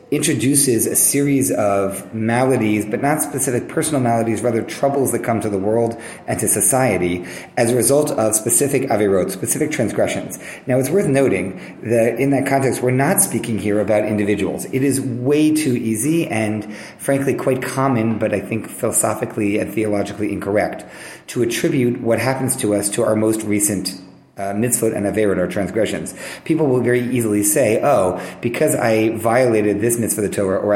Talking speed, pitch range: 170 wpm, 105-130 Hz